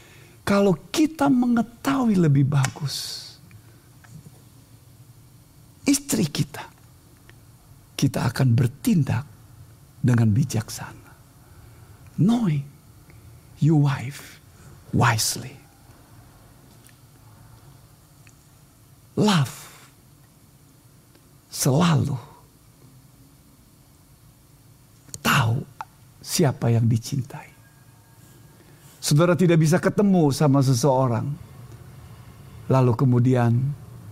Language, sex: Indonesian, male